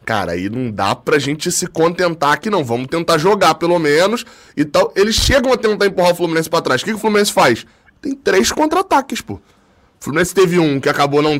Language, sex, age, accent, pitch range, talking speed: Portuguese, male, 20-39, Brazilian, 140-190 Hz, 215 wpm